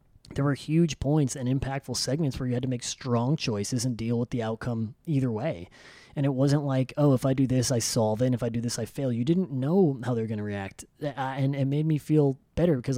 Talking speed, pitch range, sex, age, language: 260 wpm, 125-155 Hz, male, 20-39, English